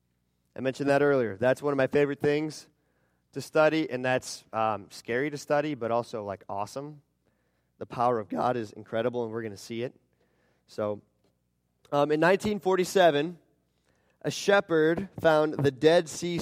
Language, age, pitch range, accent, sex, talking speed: English, 30-49, 130-185 Hz, American, male, 160 wpm